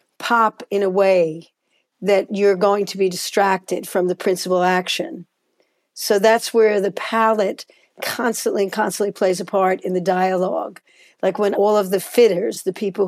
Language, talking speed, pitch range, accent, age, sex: English, 165 wpm, 185-205 Hz, American, 60-79, female